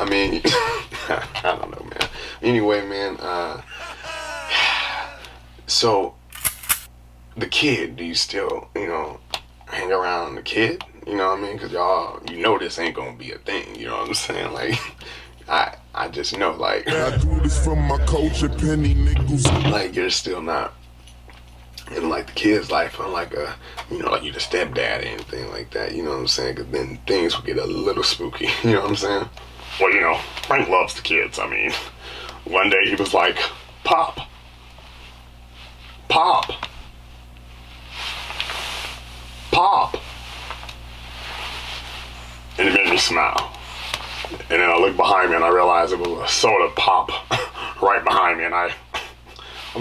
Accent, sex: American, male